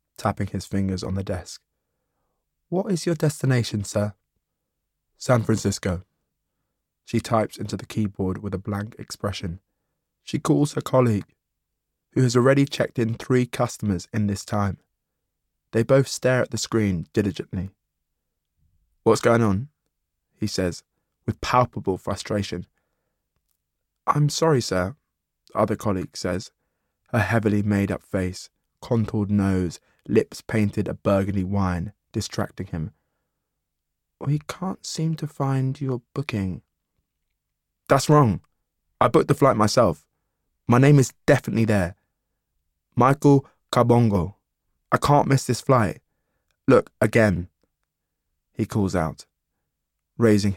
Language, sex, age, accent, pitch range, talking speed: English, male, 20-39, British, 95-120 Hz, 125 wpm